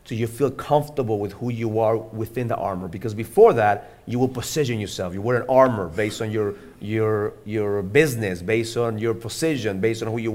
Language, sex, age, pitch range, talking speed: English, male, 40-59, 115-150 Hz, 210 wpm